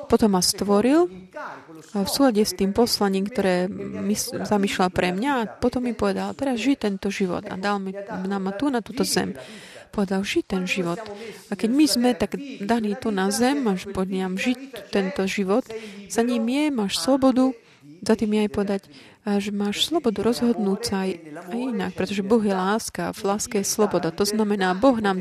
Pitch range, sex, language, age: 190-230 Hz, female, Slovak, 30-49